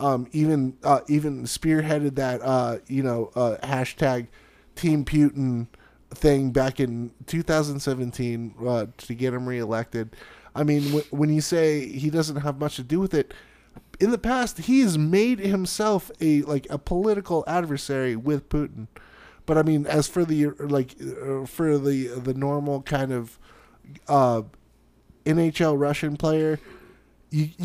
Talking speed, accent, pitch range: 150 wpm, American, 125-155 Hz